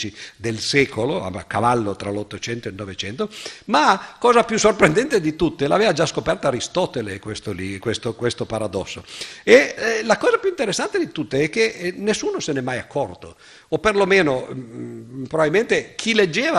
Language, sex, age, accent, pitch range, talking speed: Italian, male, 50-69, native, 125-170 Hz, 165 wpm